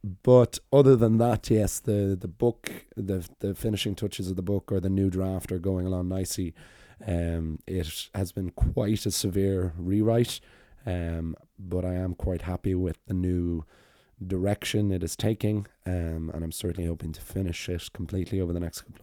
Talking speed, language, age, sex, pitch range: 180 wpm, English, 20-39, male, 85-100 Hz